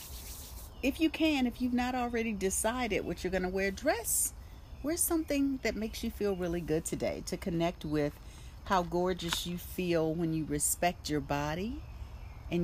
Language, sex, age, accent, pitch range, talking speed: English, female, 40-59, American, 150-215 Hz, 165 wpm